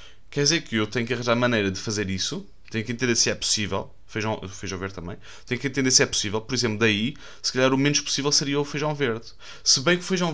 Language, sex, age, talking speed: Portuguese, male, 20-39, 255 wpm